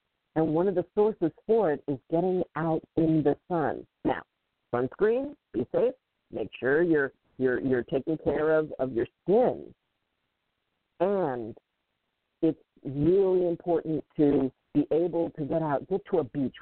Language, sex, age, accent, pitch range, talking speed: English, female, 50-69, American, 145-180 Hz, 150 wpm